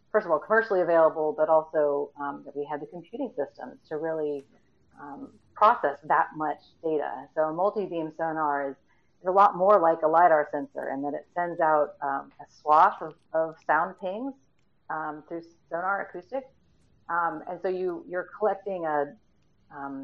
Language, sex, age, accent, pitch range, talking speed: English, female, 40-59, American, 150-185 Hz, 175 wpm